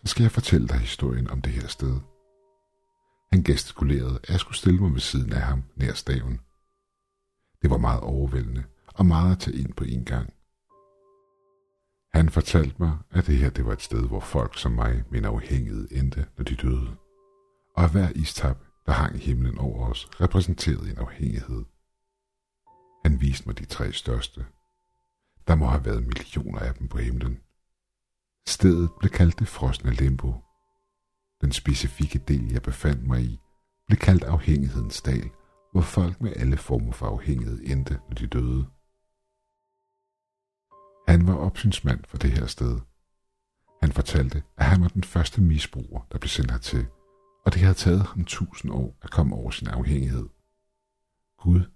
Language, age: Danish, 60-79